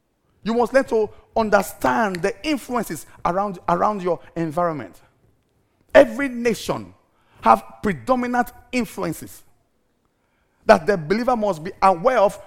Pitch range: 155-230 Hz